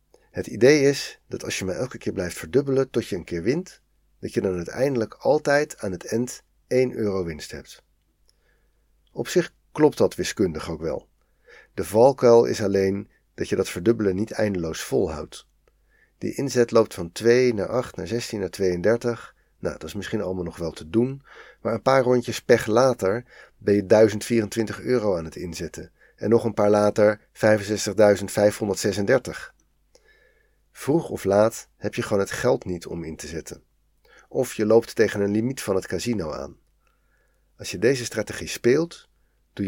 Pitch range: 85-115 Hz